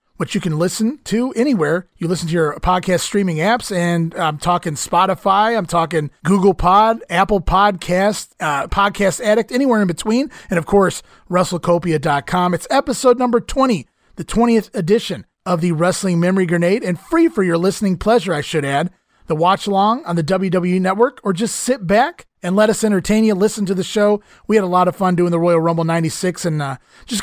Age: 30-49